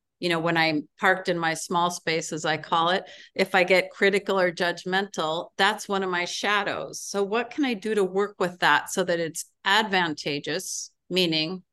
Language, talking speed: English, 195 wpm